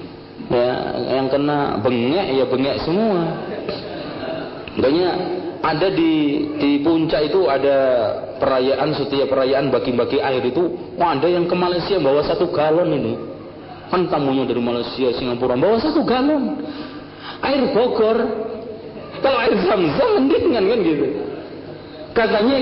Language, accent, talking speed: Indonesian, native, 120 wpm